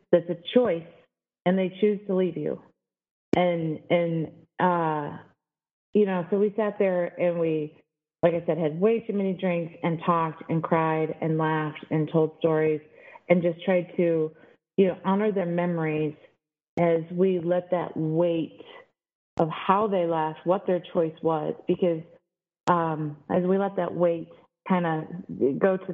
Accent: American